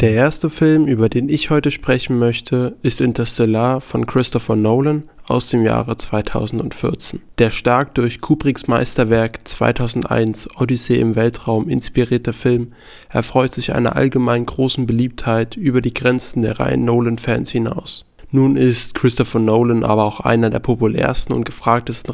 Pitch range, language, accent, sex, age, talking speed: 115-130 Hz, German, German, male, 20-39, 145 wpm